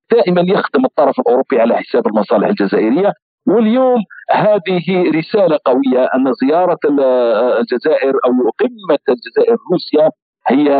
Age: 50-69